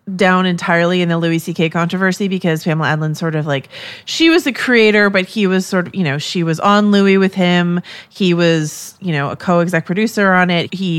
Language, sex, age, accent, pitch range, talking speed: English, female, 30-49, American, 150-190 Hz, 225 wpm